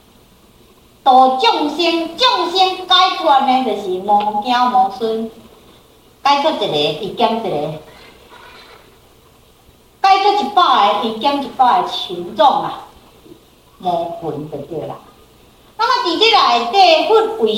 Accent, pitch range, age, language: American, 225-365 Hz, 50-69, Chinese